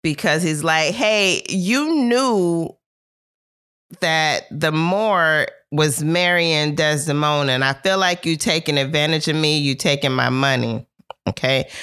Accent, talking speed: American, 130 wpm